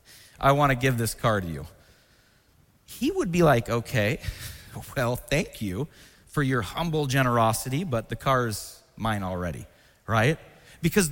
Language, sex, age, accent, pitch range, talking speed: English, male, 30-49, American, 110-160 Hz, 145 wpm